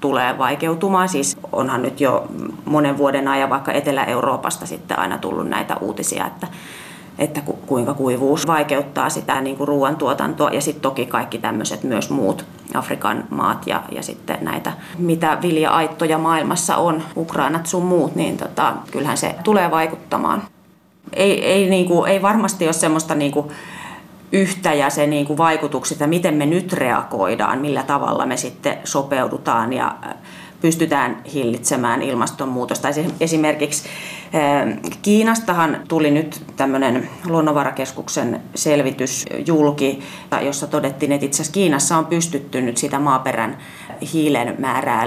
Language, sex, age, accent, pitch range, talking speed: Finnish, female, 30-49, native, 140-175 Hz, 130 wpm